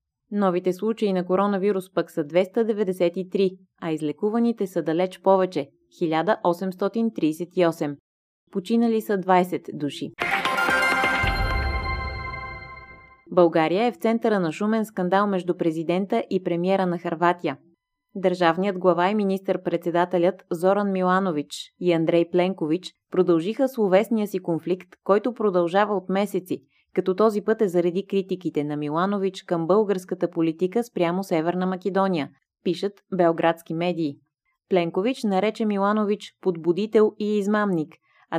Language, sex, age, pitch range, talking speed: Bulgarian, female, 20-39, 165-200 Hz, 115 wpm